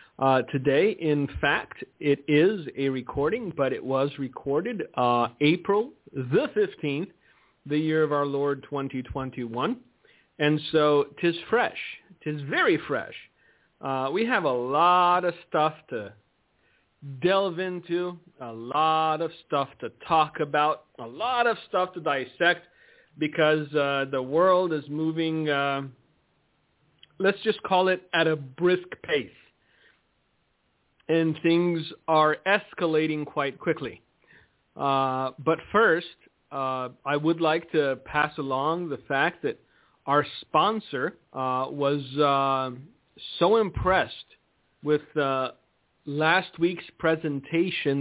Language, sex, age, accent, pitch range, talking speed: English, male, 40-59, American, 140-170 Hz, 125 wpm